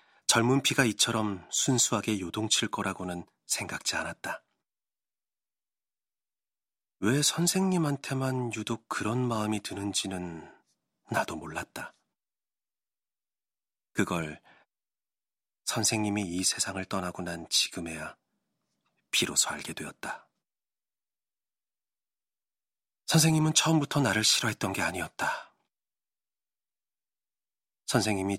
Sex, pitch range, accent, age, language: male, 95-115 Hz, native, 40-59, Korean